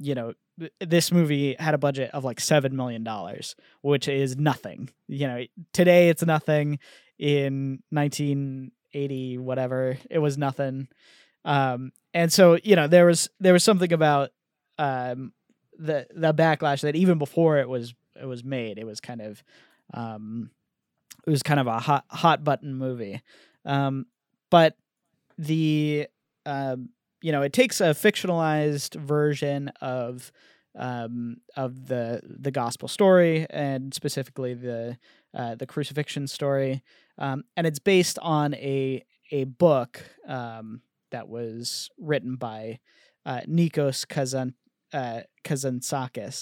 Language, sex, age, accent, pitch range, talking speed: English, male, 20-39, American, 125-155 Hz, 135 wpm